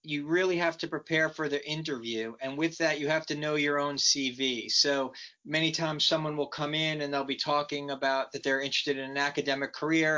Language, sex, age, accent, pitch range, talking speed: English, male, 30-49, American, 135-155 Hz, 220 wpm